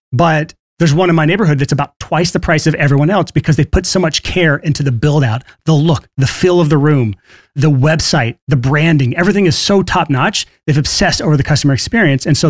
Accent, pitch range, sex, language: American, 125-160 Hz, male, English